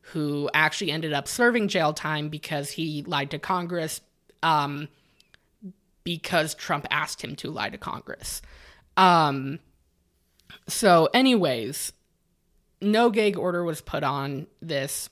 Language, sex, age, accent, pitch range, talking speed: English, female, 20-39, American, 150-205 Hz, 125 wpm